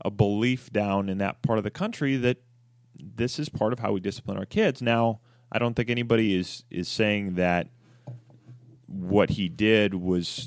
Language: English